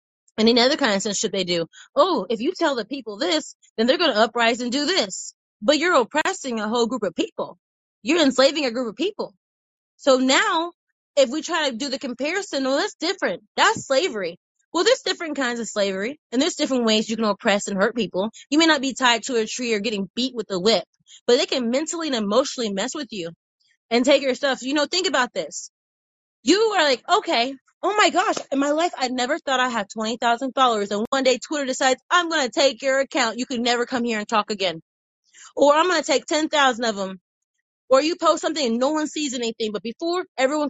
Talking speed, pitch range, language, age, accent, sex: 230 wpm, 225-305 Hz, English, 20-39, American, female